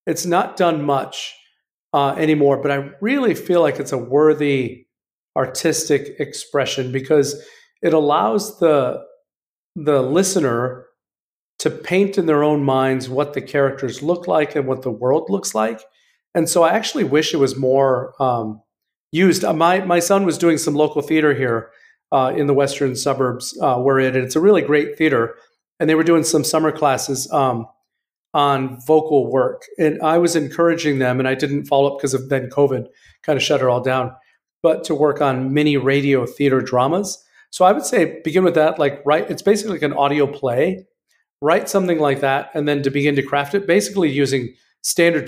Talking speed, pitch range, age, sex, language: 185 wpm, 135-165 Hz, 40-59, male, English